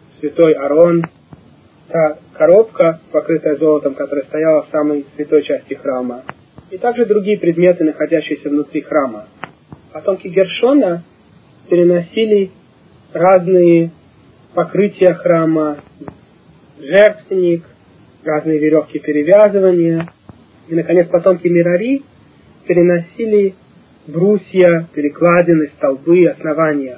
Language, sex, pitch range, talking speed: Russian, male, 150-175 Hz, 85 wpm